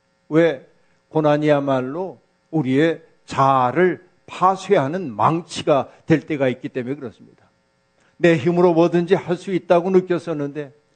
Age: 50-69